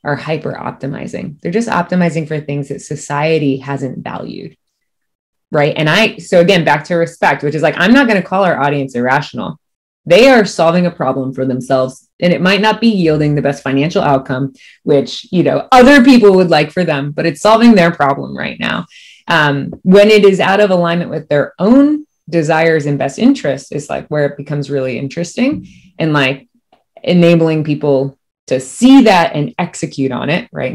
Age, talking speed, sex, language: 20-39, 185 wpm, female, English